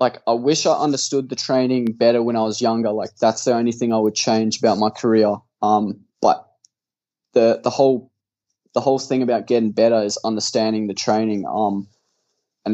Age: 10-29